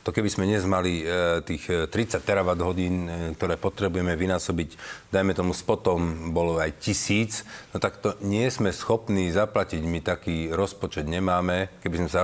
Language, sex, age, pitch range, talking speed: Slovak, male, 40-59, 90-110 Hz, 150 wpm